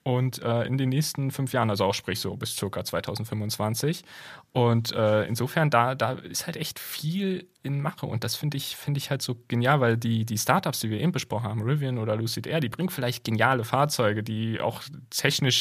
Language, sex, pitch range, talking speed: German, male, 115-145 Hz, 210 wpm